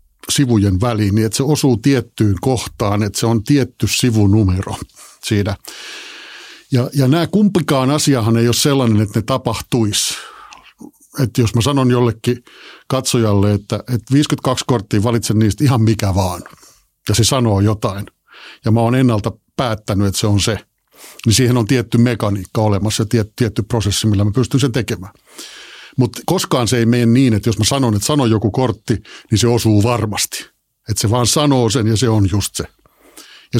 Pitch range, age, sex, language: 110-135 Hz, 50-69, male, Finnish